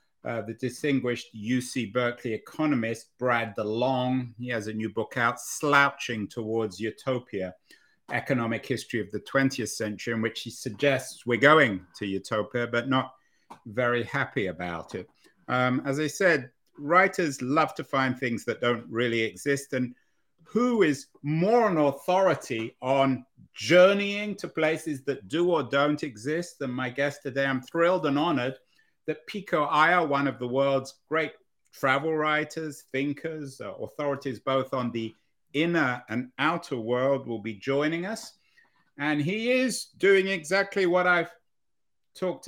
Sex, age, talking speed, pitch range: male, 50-69, 150 wpm, 120-160 Hz